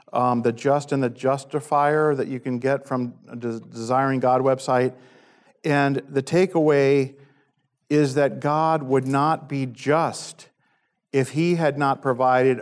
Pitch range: 120-145 Hz